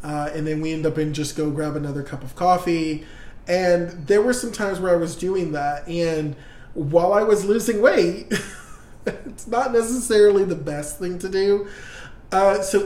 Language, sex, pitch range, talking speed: English, male, 150-185 Hz, 185 wpm